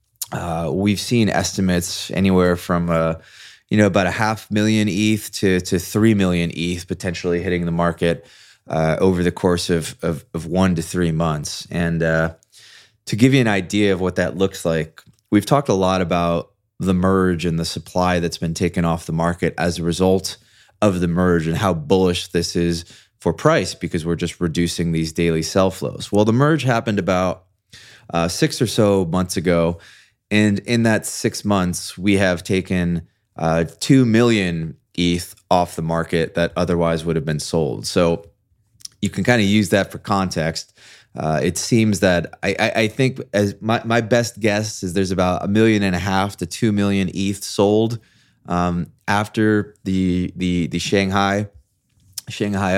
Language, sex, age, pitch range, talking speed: English, male, 20-39, 85-105 Hz, 180 wpm